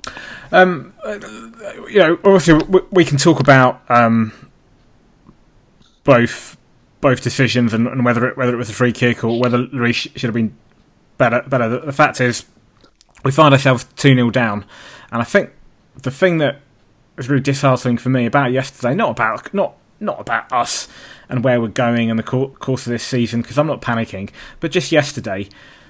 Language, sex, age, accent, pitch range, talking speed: English, male, 20-39, British, 115-140 Hz, 170 wpm